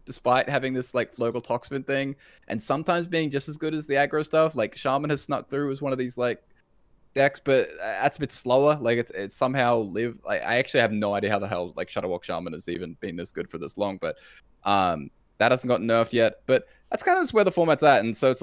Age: 20-39